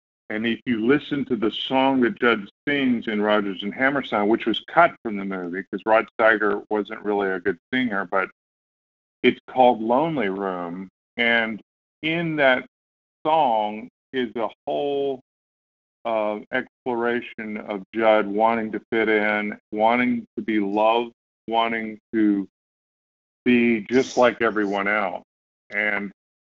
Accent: American